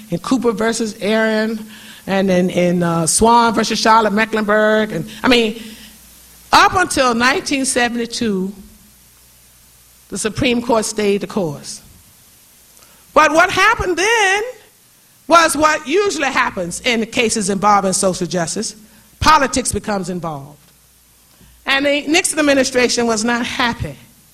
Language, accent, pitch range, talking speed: English, American, 200-260 Hz, 120 wpm